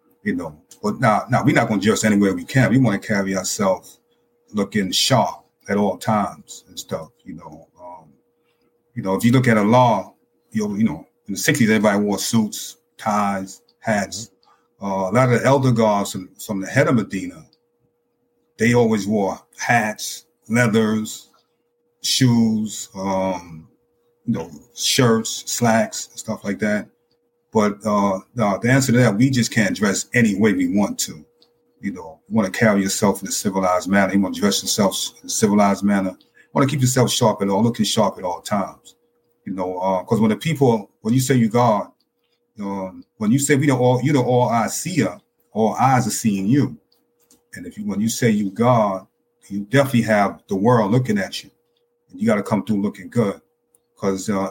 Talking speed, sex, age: 195 wpm, male, 30-49